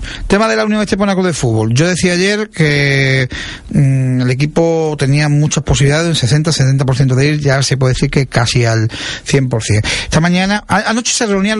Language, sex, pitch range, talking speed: Spanish, male, 125-165 Hz, 185 wpm